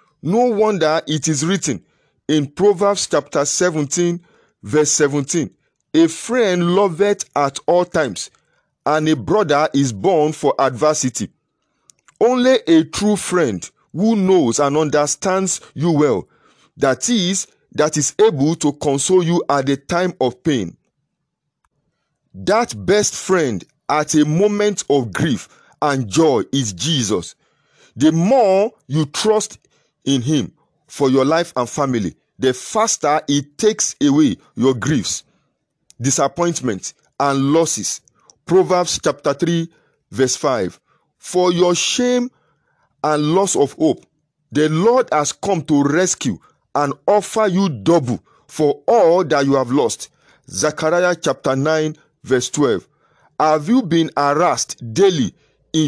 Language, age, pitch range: English, 50-69, 140-185 Hz